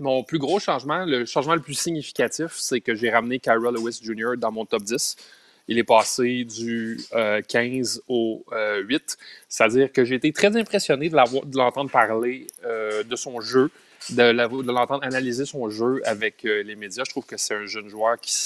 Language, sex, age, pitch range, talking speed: French, male, 30-49, 115-140 Hz, 180 wpm